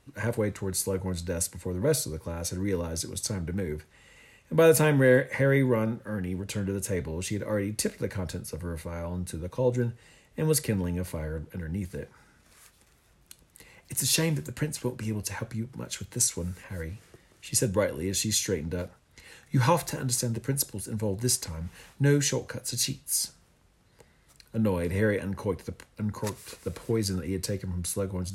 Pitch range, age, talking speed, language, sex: 90-120 Hz, 40-59, 205 wpm, English, male